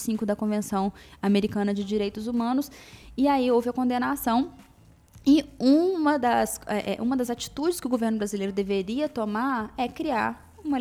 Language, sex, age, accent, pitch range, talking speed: Portuguese, female, 20-39, Brazilian, 195-245 Hz, 140 wpm